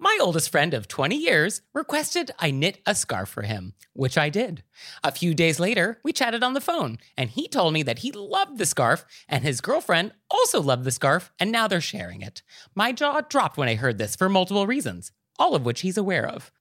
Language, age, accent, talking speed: English, 30-49, American, 225 wpm